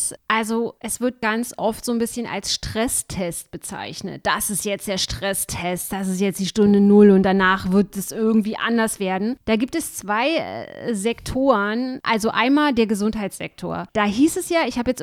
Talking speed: 185 wpm